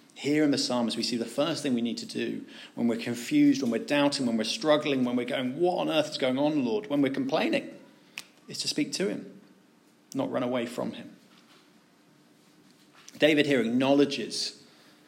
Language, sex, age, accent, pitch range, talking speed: English, male, 40-59, British, 130-215 Hz, 190 wpm